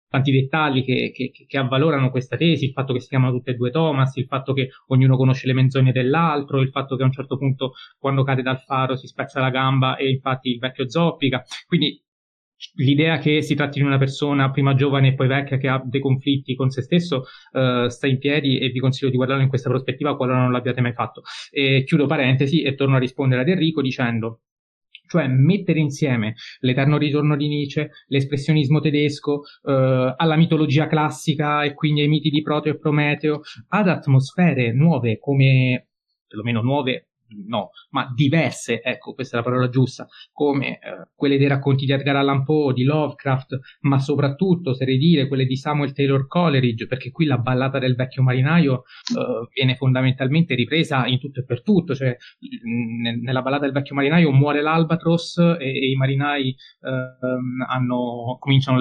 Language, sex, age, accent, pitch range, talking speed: Italian, male, 20-39, native, 130-145 Hz, 185 wpm